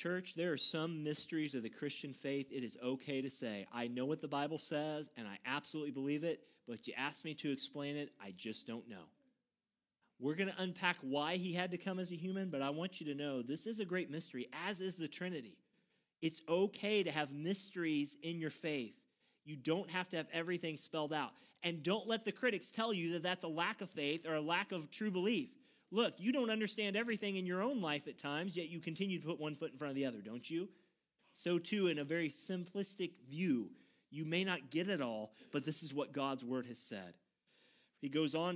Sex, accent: male, American